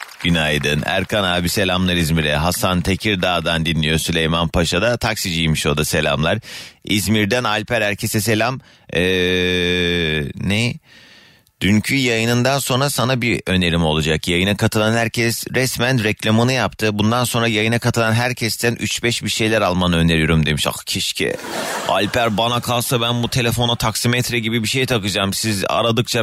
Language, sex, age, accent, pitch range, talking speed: Turkish, male, 30-49, native, 100-150 Hz, 135 wpm